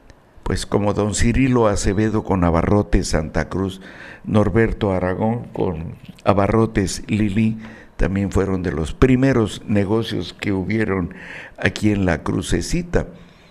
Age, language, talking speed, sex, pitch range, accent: 60-79, Spanish, 115 wpm, male, 95-120 Hz, Mexican